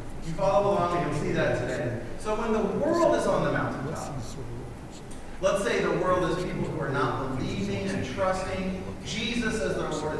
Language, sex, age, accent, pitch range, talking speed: English, male, 40-59, American, 165-215 Hz, 190 wpm